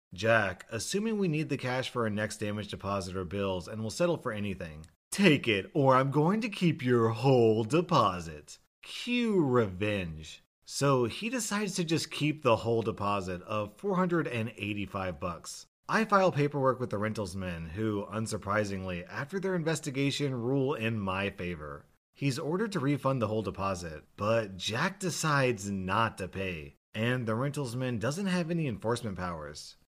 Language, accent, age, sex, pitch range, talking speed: English, American, 30-49, male, 100-145 Hz, 160 wpm